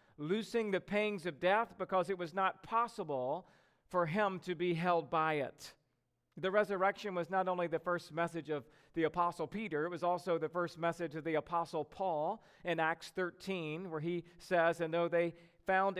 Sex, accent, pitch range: male, American, 170-210 Hz